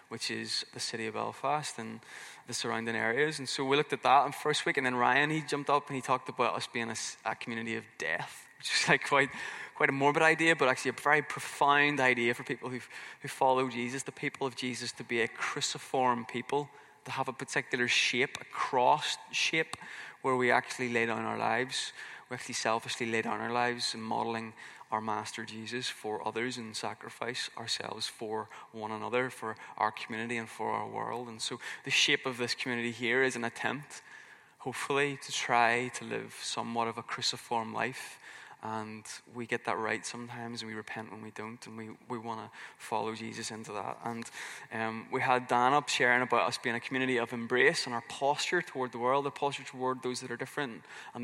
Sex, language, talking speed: male, English, 205 wpm